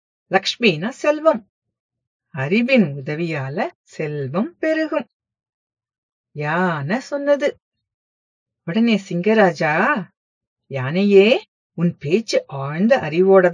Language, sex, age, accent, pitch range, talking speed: English, female, 50-69, Indian, 155-255 Hz, 90 wpm